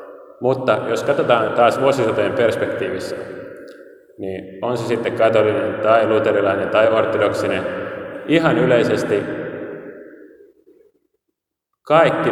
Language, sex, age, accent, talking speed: Finnish, male, 30-49, native, 90 wpm